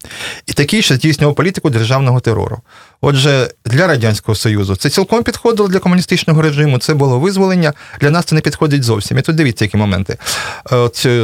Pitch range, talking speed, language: 115-150 Hz, 170 wpm, Russian